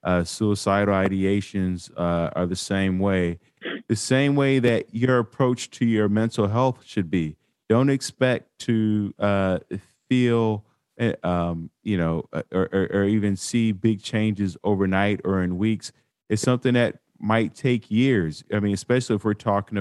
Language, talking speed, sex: English, 155 wpm, male